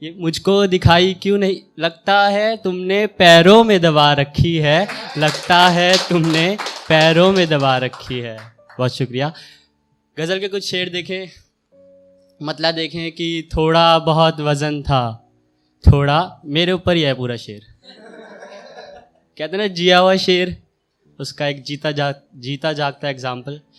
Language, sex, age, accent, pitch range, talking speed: Hindi, male, 20-39, native, 145-180 Hz, 135 wpm